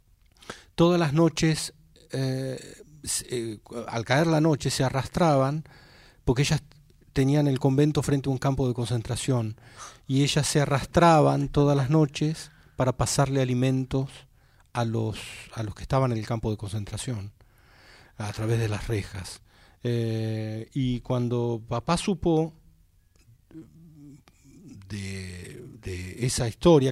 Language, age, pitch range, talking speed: Spanish, 40-59, 115-145 Hz, 125 wpm